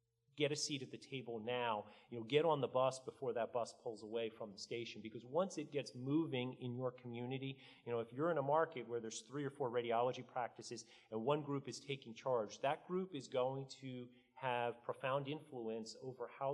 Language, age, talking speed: English, 40-59, 215 wpm